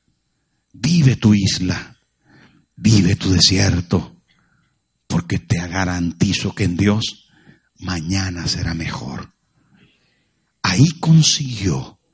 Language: Spanish